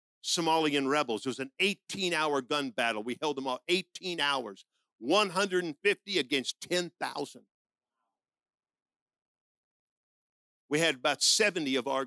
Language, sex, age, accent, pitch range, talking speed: English, male, 50-69, American, 150-235 Hz, 115 wpm